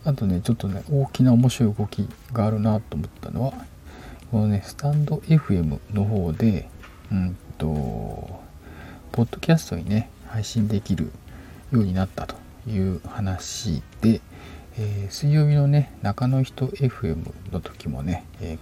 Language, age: Japanese, 50-69